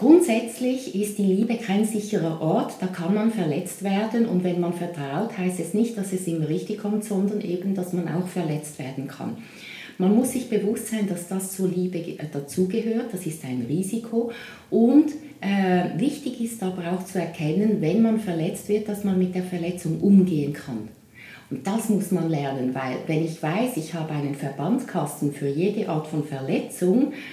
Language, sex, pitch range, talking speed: German, female, 160-205 Hz, 180 wpm